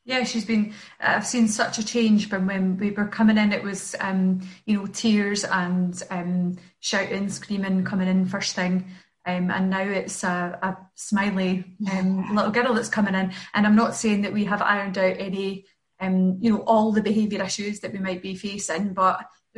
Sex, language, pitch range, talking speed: female, English, 185-205 Hz, 200 wpm